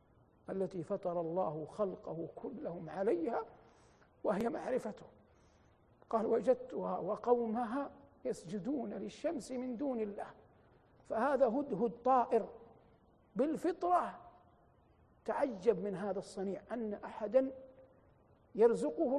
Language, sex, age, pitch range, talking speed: Arabic, male, 50-69, 205-275 Hz, 85 wpm